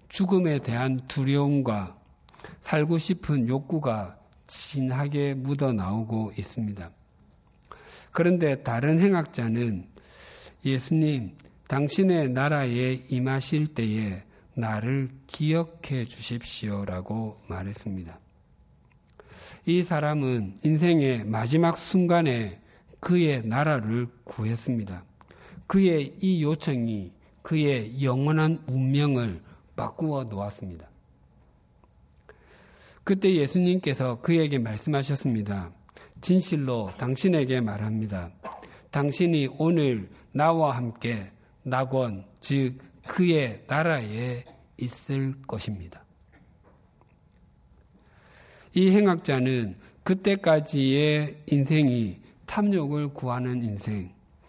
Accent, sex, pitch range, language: native, male, 110-155 Hz, Korean